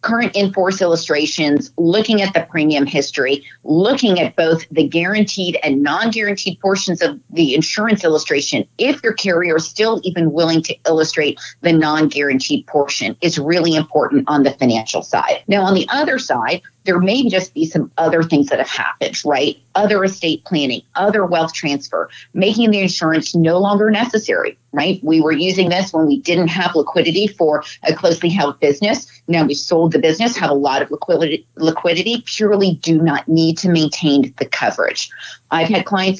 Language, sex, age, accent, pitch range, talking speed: English, female, 40-59, American, 160-205 Hz, 170 wpm